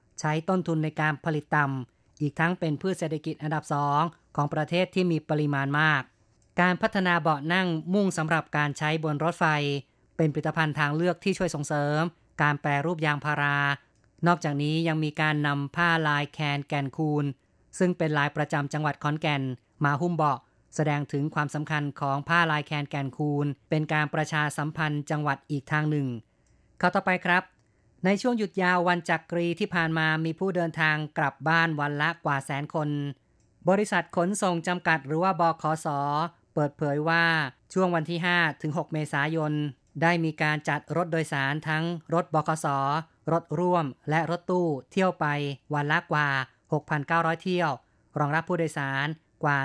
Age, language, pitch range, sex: 20-39, Thai, 145-165 Hz, female